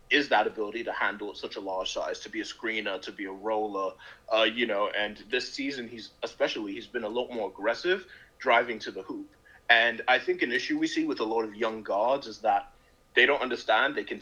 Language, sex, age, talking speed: English, male, 30-49, 235 wpm